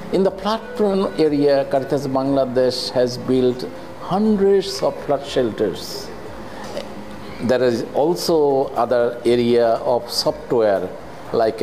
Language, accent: Filipino, Indian